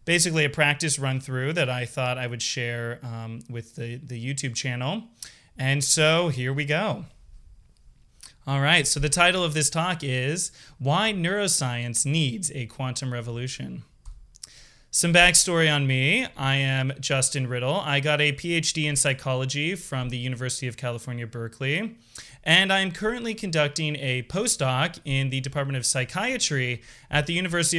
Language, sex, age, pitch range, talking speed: English, male, 30-49, 130-165 Hz, 155 wpm